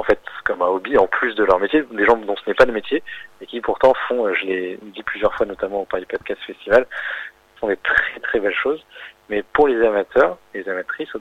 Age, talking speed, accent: 30-49, 245 wpm, French